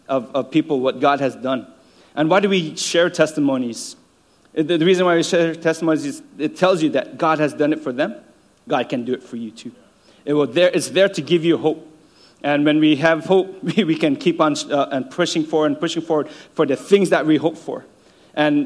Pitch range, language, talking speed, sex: 150-185 Hz, English, 230 wpm, male